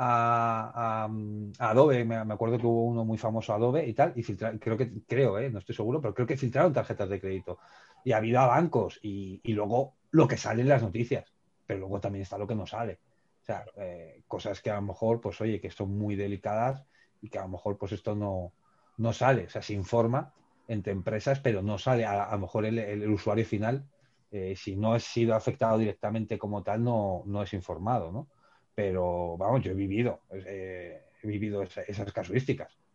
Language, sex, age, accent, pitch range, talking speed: Spanish, male, 30-49, Spanish, 105-125 Hz, 220 wpm